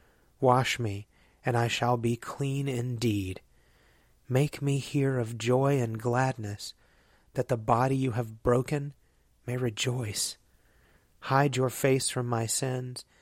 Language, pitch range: English, 110-130 Hz